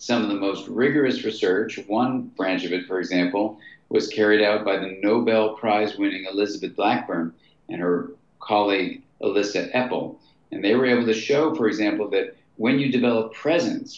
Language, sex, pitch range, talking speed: English, male, 95-145 Hz, 165 wpm